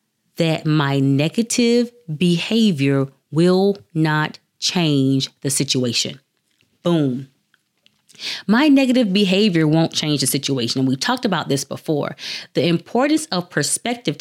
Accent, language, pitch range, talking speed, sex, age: American, English, 145-210 Hz, 115 wpm, female, 30-49